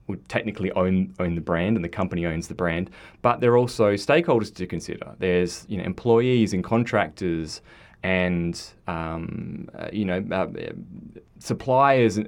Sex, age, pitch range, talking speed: male, 20-39, 85-110 Hz, 160 wpm